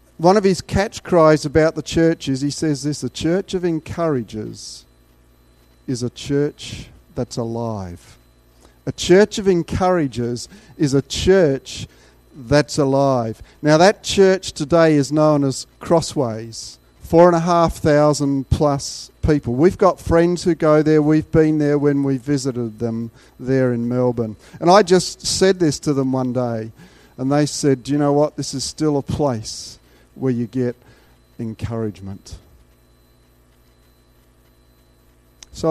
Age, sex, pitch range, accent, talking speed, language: 50-69, male, 100-155 Hz, Australian, 145 wpm, English